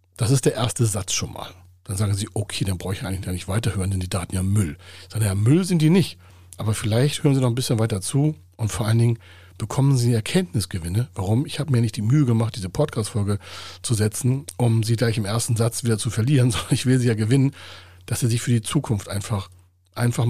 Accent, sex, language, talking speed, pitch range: German, male, German, 240 wpm, 90-120 Hz